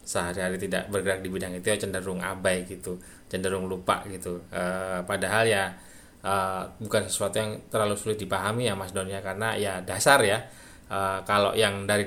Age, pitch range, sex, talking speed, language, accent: 20-39, 95-110 Hz, male, 165 wpm, Indonesian, native